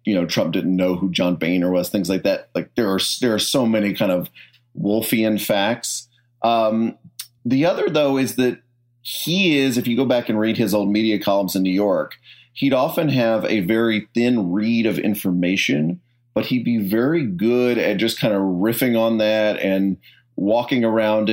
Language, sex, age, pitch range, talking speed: English, male, 30-49, 100-120 Hz, 190 wpm